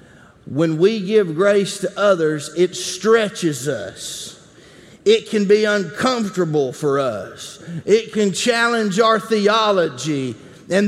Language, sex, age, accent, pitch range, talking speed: English, male, 40-59, American, 185-245 Hz, 115 wpm